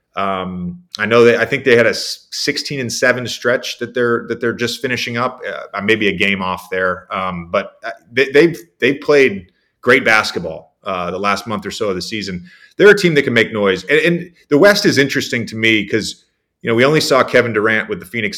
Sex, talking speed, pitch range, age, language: male, 225 wpm, 105-145 Hz, 30-49, English